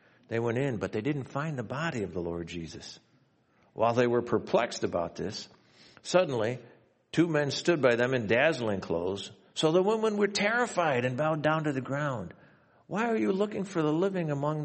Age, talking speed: 60-79, 195 wpm